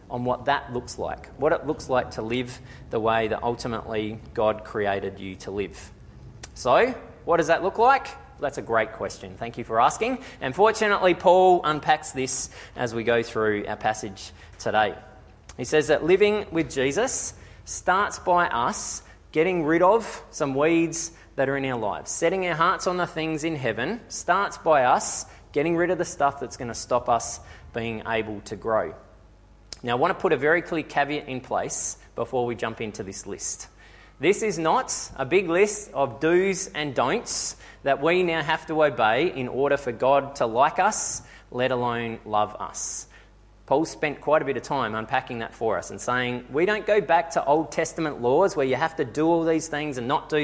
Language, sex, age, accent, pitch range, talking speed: English, male, 20-39, Australian, 115-160 Hz, 195 wpm